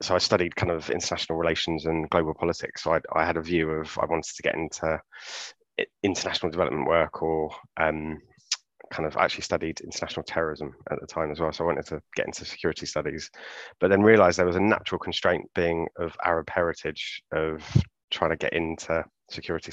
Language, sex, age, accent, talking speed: English, male, 20-39, British, 195 wpm